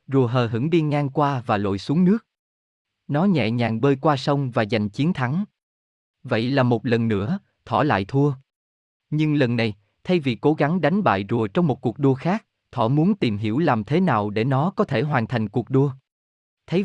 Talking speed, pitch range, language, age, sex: 210 wpm, 115-150 Hz, Vietnamese, 20-39, male